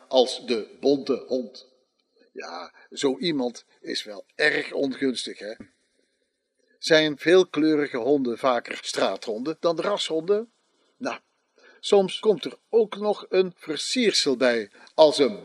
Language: Dutch